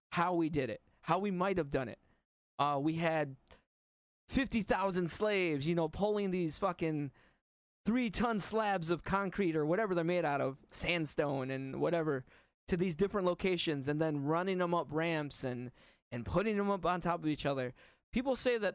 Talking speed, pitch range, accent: 180 wpm, 140-185 Hz, American